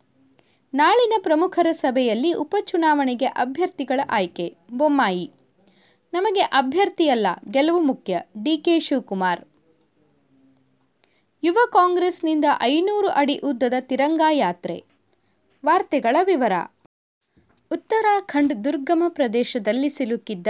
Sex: female